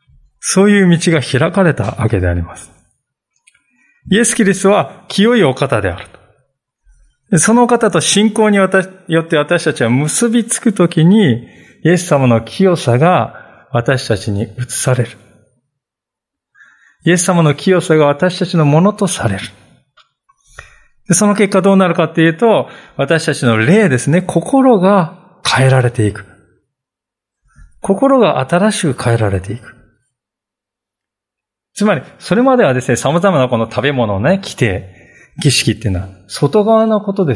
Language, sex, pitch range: Japanese, male, 115-190 Hz